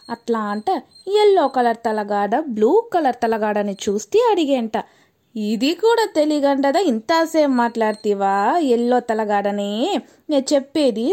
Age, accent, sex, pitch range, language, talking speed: 20-39, native, female, 225-300 Hz, Telugu, 100 wpm